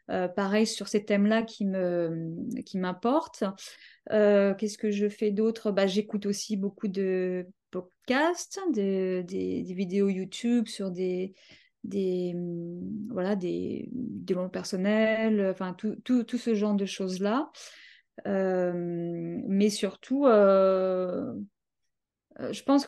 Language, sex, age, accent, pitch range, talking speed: French, female, 20-39, French, 200-240 Hz, 125 wpm